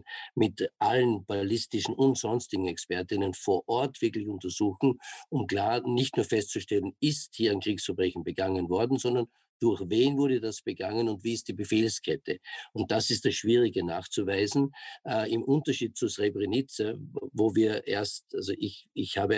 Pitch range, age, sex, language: 100-125 Hz, 50-69, male, German